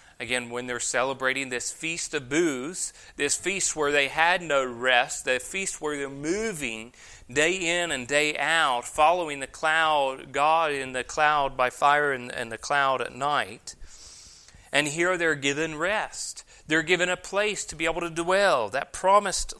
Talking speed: 170 wpm